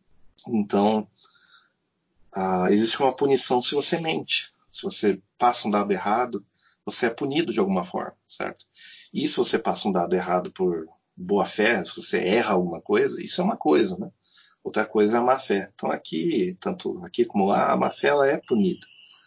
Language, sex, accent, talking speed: Portuguese, male, Brazilian, 180 wpm